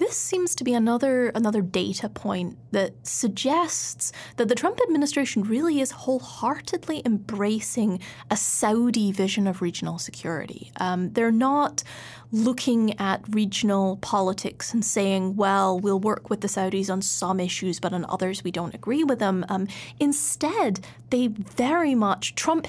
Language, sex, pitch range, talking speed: English, female, 200-255 Hz, 150 wpm